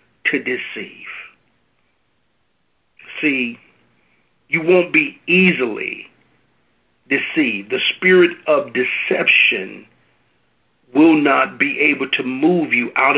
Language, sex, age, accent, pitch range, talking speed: English, male, 50-69, American, 120-180 Hz, 90 wpm